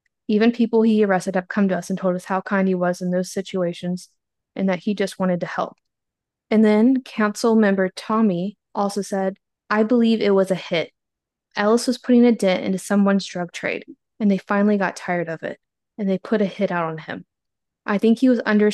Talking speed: 215 wpm